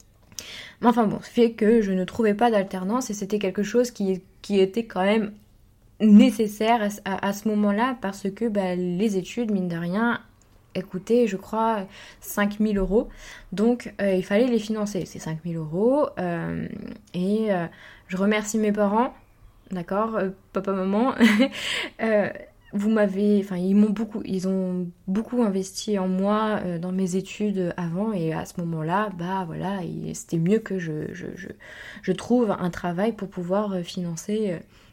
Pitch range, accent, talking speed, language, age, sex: 180-215 Hz, French, 165 wpm, French, 20-39, female